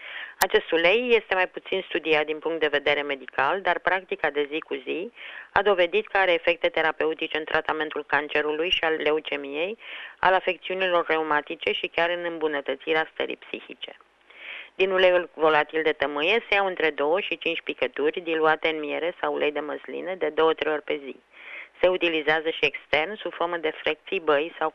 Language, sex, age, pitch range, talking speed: Romanian, female, 30-49, 155-190 Hz, 175 wpm